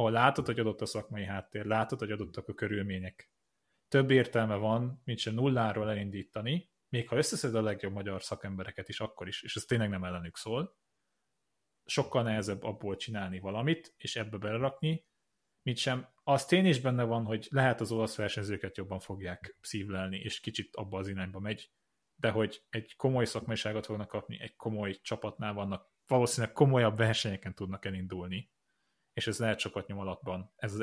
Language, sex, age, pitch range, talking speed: Hungarian, male, 30-49, 100-125 Hz, 170 wpm